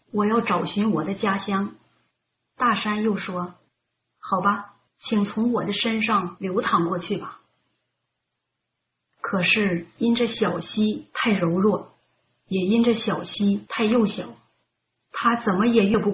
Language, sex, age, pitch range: Chinese, female, 40-59, 175-220 Hz